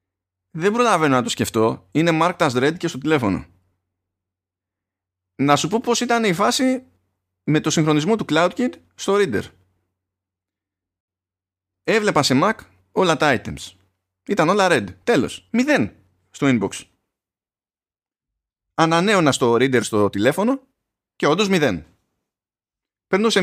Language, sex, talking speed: Greek, male, 125 wpm